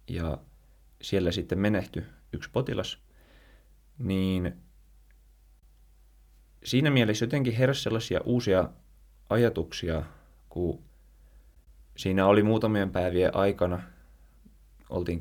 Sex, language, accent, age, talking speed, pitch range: male, Finnish, native, 20-39, 85 wpm, 75-100 Hz